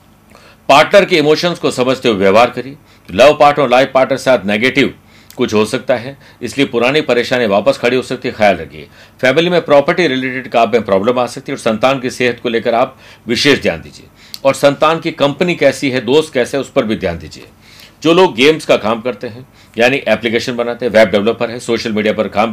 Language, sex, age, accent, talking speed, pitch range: Hindi, male, 60-79, native, 220 wpm, 110-140 Hz